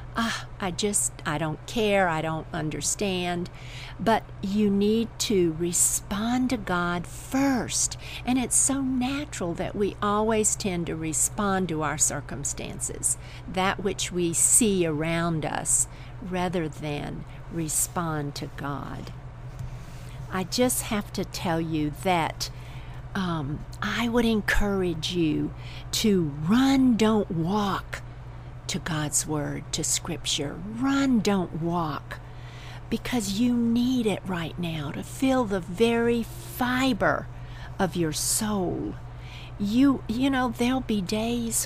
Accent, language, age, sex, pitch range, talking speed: American, English, 50-69, female, 140-215 Hz, 120 wpm